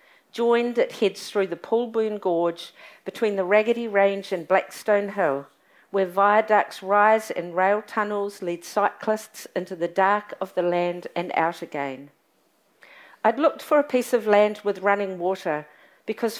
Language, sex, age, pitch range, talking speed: English, female, 50-69, 185-230 Hz, 155 wpm